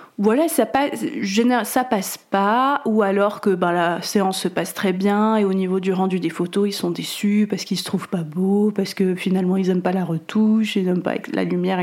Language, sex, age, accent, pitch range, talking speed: French, female, 30-49, French, 190-225 Hz, 230 wpm